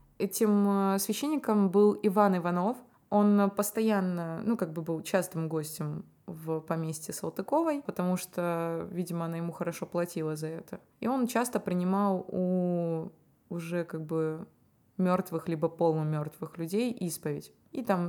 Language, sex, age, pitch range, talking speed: Russian, female, 20-39, 170-205 Hz, 135 wpm